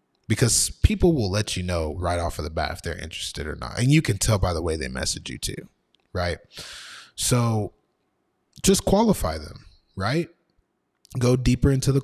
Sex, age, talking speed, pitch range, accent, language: male, 20-39, 185 wpm, 95-125 Hz, American, English